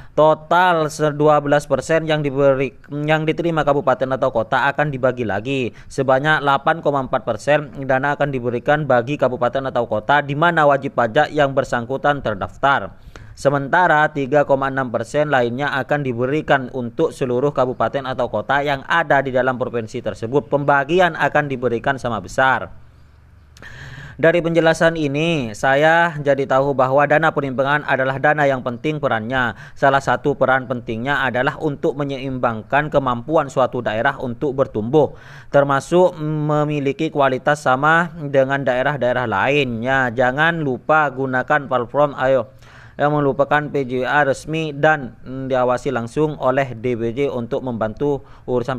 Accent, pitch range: native, 125-150 Hz